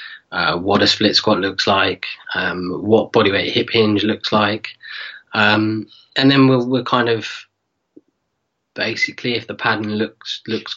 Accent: British